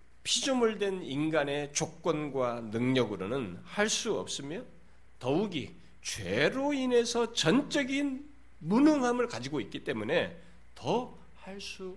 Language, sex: Korean, male